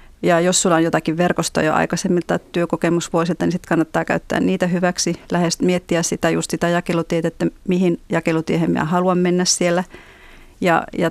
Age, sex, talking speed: 30-49, female, 150 wpm